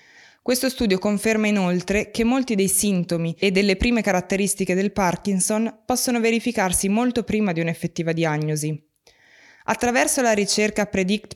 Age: 20-39